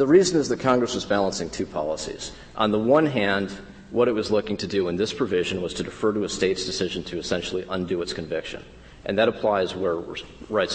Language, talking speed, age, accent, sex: English, 220 wpm, 40-59, American, male